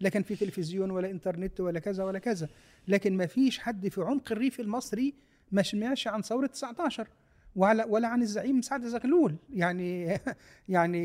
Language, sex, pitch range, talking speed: Arabic, male, 180-225 Hz, 165 wpm